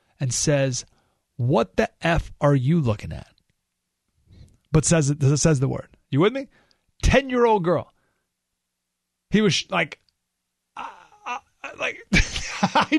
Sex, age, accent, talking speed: male, 30-49, American, 120 wpm